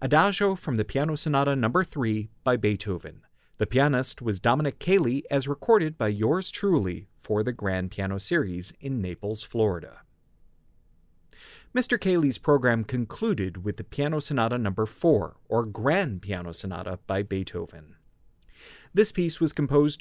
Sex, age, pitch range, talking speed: male, 30-49, 100-150 Hz, 145 wpm